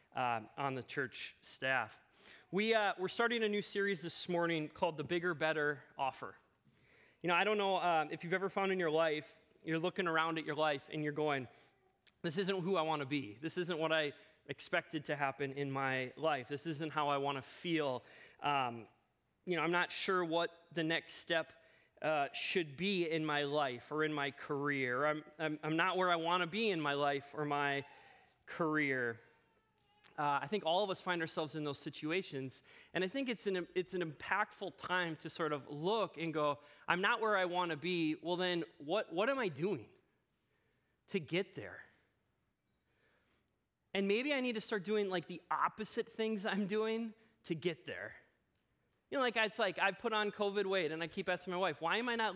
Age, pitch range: 20-39, 150-195 Hz